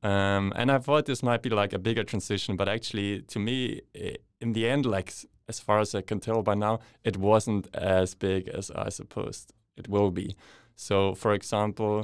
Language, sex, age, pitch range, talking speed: English, male, 20-39, 105-125 Hz, 205 wpm